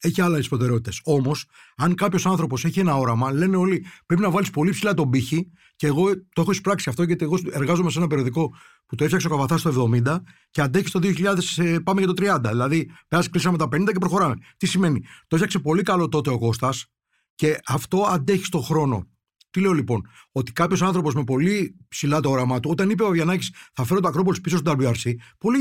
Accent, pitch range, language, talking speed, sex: native, 135-185 Hz, Greek, 210 wpm, male